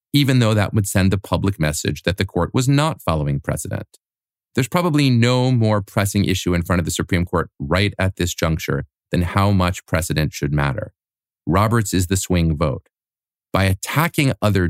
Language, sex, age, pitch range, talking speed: English, male, 40-59, 90-130 Hz, 185 wpm